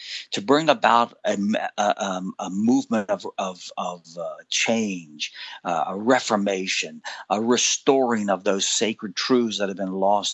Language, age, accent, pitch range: English, 50-69, American, 95-125 Hz